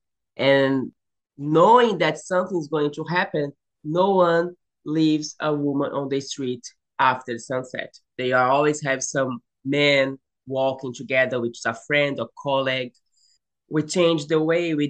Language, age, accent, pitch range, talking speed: English, 20-39, Brazilian, 130-150 Hz, 145 wpm